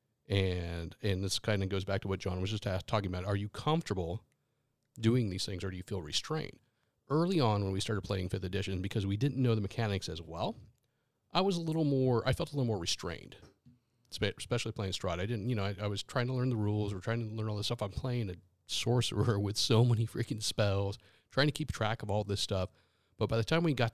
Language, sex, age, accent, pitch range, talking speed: English, male, 40-59, American, 95-125 Hz, 245 wpm